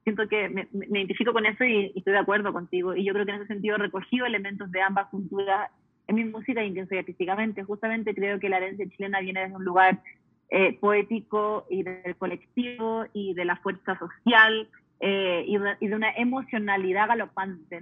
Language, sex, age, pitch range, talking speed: Spanish, female, 30-49, 190-220 Hz, 200 wpm